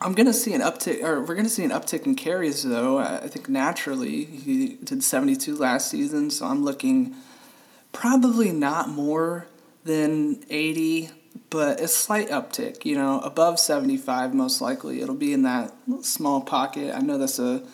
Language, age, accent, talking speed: English, 30-49, American, 175 wpm